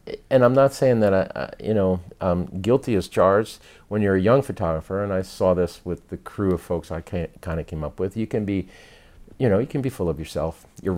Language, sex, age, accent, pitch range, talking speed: English, male, 50-69, American, 80-100 Hz, 240 wpm